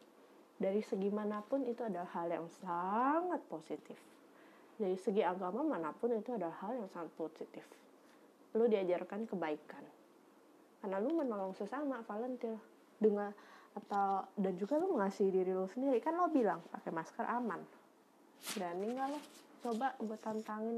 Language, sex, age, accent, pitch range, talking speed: Indonesian, female, 20-39, native, 185-235 Hz, 125 wpm